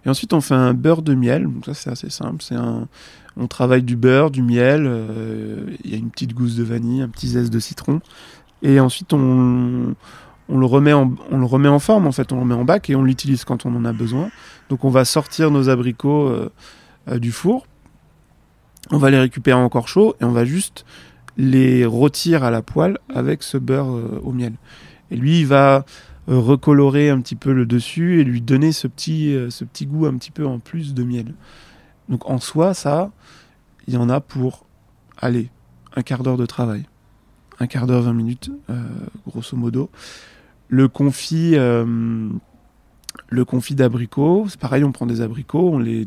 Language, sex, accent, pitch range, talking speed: French, male, French, 120-145 Hz, 200 wpm